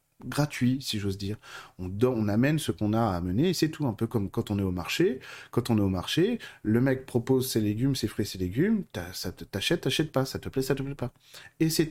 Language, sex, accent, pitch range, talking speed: French, male, French, 110-140 Hz, 245 wpm